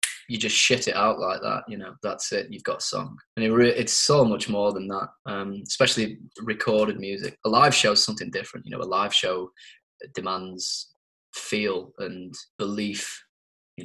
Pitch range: 100-120 Hz